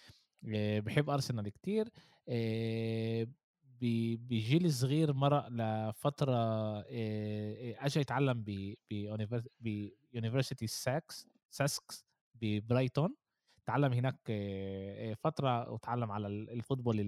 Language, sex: Arabic, male